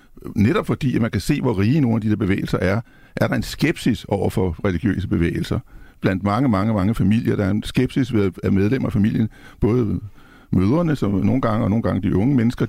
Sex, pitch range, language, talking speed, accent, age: male, 100-125 Hz, Danish, 220 wpm, native, 60-79